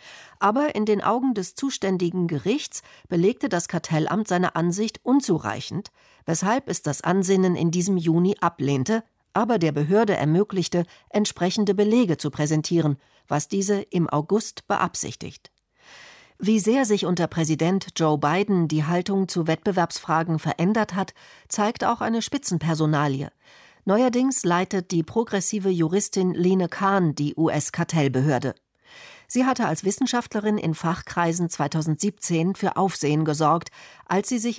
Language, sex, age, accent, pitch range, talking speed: German, female, 50-69, German, 160-210 Hz, 125 wpm